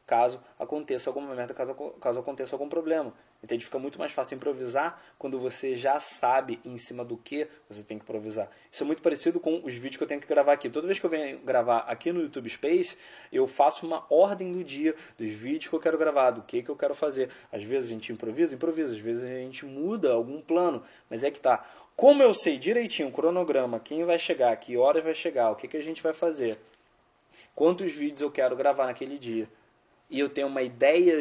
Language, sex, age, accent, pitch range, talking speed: Portuguese, male, 20-39, Brazilian, 120-160 Hz, 225 wpm